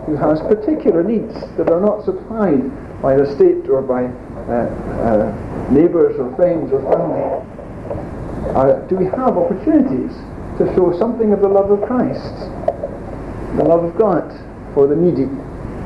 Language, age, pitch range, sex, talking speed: English, 60-79, 135-215 Hz, male, 150 wpm